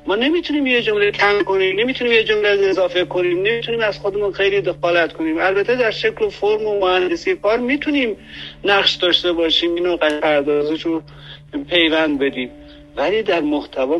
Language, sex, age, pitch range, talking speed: Persian, male, 50-69, 145-205 Hz, 160 wpm